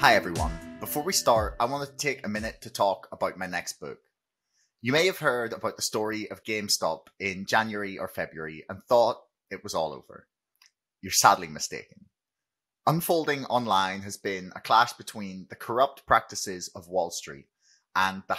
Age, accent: 20-39, British